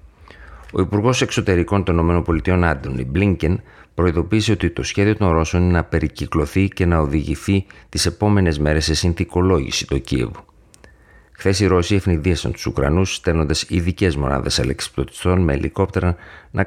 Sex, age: male, 50-69